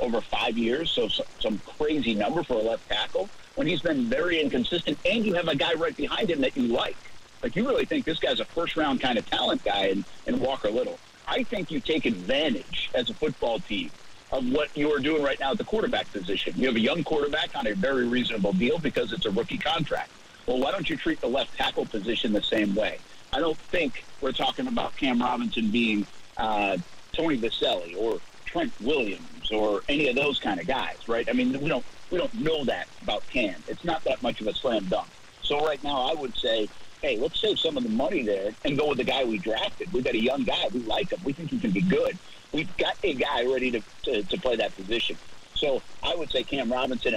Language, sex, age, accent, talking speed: English, male, 50-69, American, 230 wpm